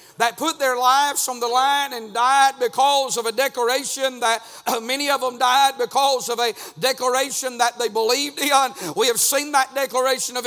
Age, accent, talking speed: 50-69, American, 190 wpm